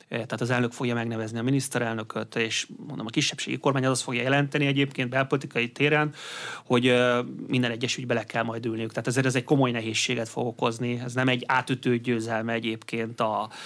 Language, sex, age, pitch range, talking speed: Hungarian, male, 30-49, 120-140 Hz, 175 wpm